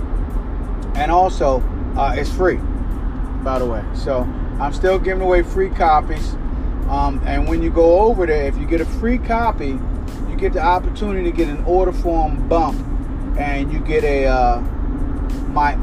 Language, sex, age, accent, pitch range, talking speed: English, male, 30-49, American, 115-155 Hz, 165 wpm